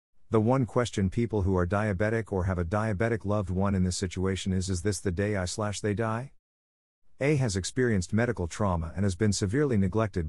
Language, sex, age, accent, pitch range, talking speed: English, male, 50-69, American, 90-115 Hz, 205 wpm